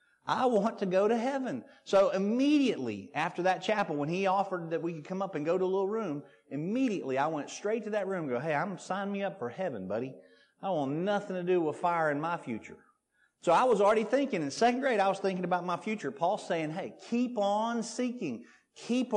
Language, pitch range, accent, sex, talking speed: English, 135-195 Hz, American, male, 225 wpm